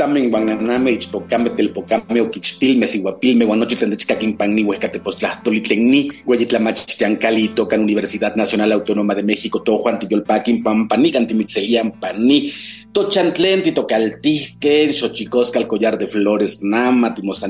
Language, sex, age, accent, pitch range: Spanish, male, 30-49, Mexican, 110-140 Hz